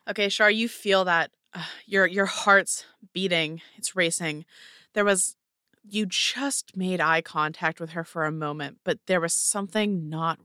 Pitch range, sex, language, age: 165-200 Hz, female, English, 20-39